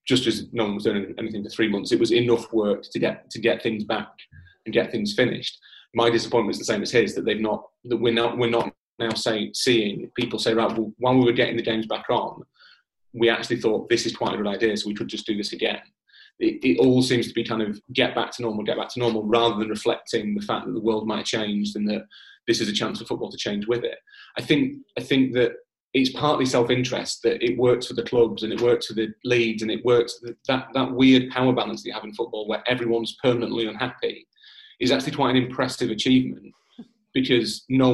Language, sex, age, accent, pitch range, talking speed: English, male, 30-49, British, 115-135 Hz, 245 wpm